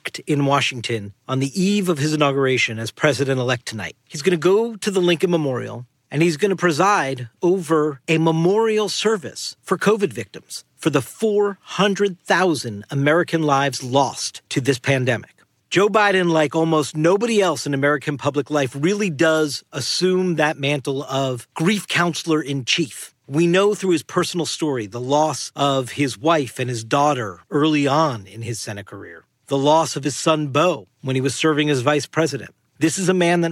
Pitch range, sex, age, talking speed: 135-185 Hz, male, 50-69, 170 wpm